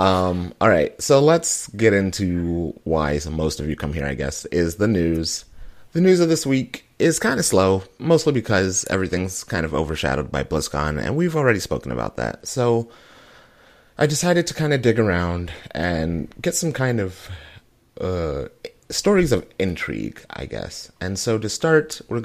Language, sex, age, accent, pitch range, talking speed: English, male, 30-49, American, 80-120 Hz, 175 wpm